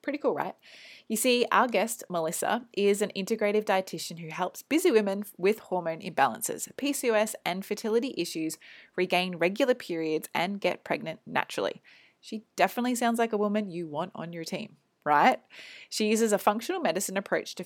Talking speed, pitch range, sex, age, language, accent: 165 wpm, 170-225 Hz, female, 20-39, English, Australian